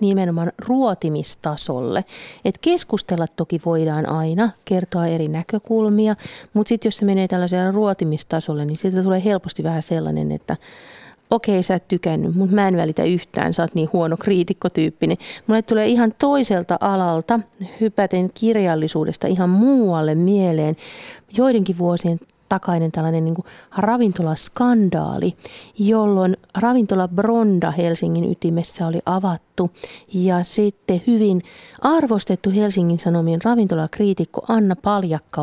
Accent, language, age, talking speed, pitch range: native, Finnish, 40-59, 120 wpm, 170-205 Hz